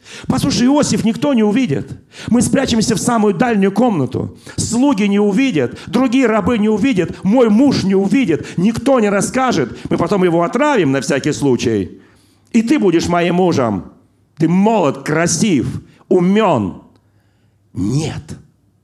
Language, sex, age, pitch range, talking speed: Russian, male, 40-59, 140-195 Hz, 135 wpm